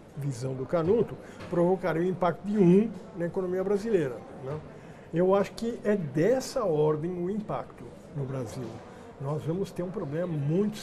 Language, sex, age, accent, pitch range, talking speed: Portuguese, male, 60-79, Brazilian, 150-215 Hz, 160 wpm